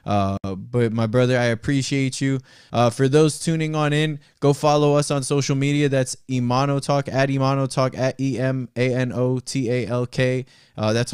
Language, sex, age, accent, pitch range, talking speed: English, male, 20-39, American, 120-150 Hz, 145 wpm